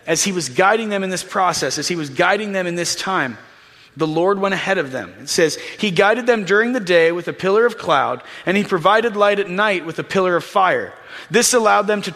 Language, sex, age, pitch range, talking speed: English, male, 30-49, 175-225 Hz, 245 wpm